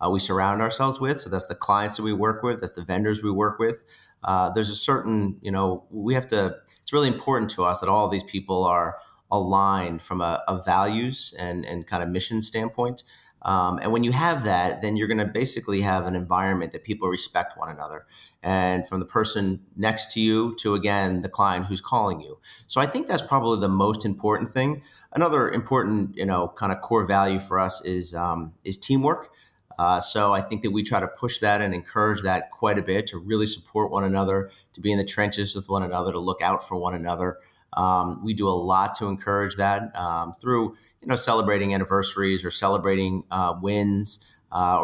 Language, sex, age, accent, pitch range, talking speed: English, male, 30-49, American, 95-110 Hz, 215 wpm